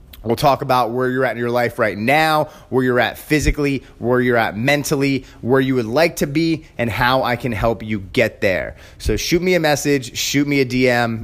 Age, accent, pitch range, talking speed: 30-49, American, 120-150 Hz, 225 wpm